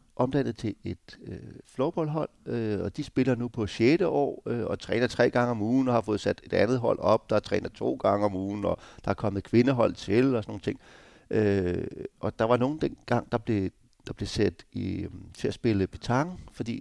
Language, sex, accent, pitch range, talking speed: Danish, male, native, 100-130 Hz, 220 wpm